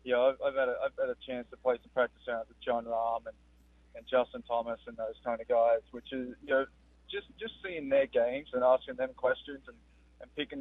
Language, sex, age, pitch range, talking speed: English, male, 20-39, 115-145 Hz, 240 wpm